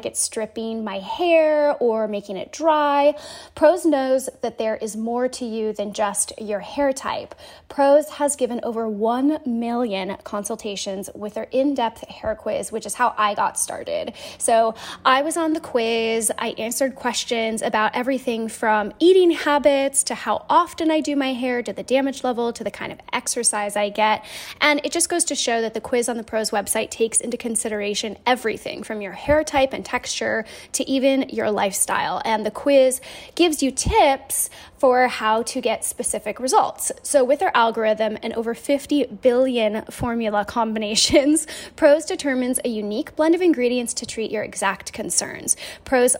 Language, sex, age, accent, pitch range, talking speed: English, female, 10-29, American, 220-285 Hz, 175 wpm